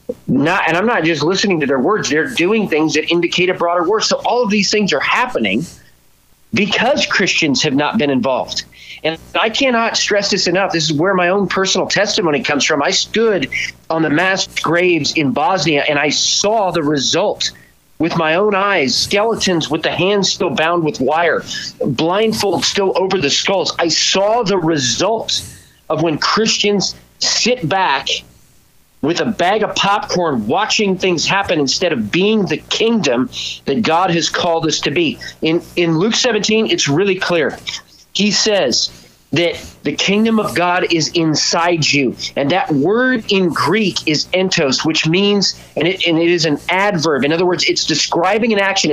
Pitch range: 155-200 Hz